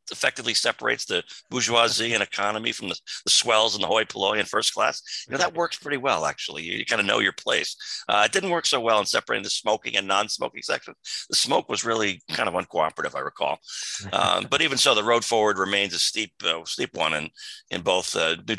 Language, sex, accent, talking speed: English, male, American, 225 wpm